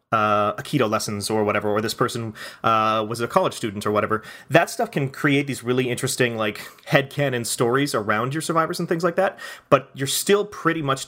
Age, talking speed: 30-49, 200 wpm